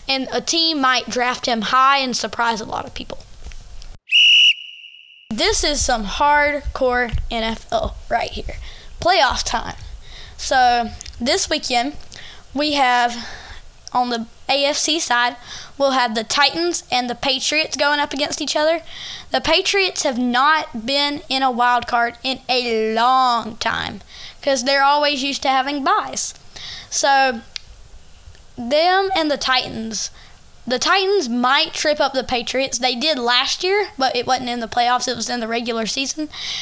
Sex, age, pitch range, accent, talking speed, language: female, 20-39, 245-295 Hz, American, 150 wpm, English